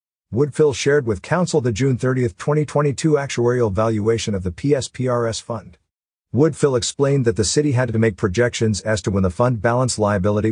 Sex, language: male, English